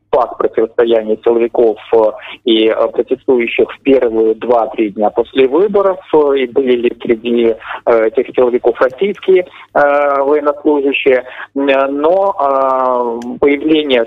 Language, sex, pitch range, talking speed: Polish, male, 115-170 Hz, 100 wpm